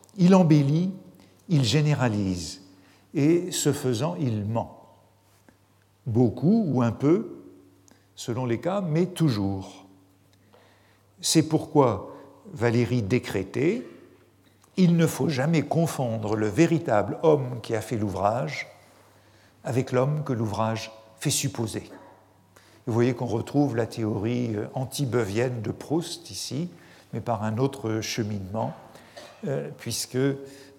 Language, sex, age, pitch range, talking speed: French, male, 50-69, 110-150 Hz, 110 wpm